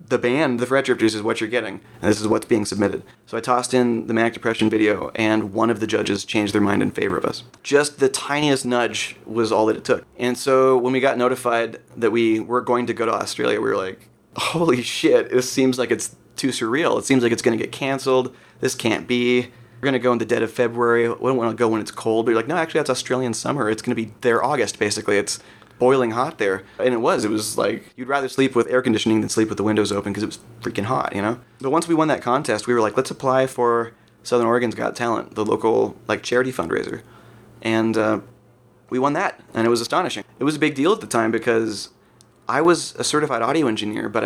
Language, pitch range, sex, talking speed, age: English, 110-125 Hz, male, 255 wpm, 30-49